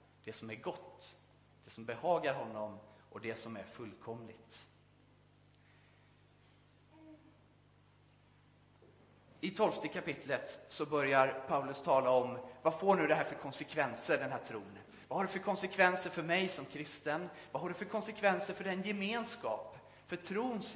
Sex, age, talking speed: male, 30-49, 140 wpm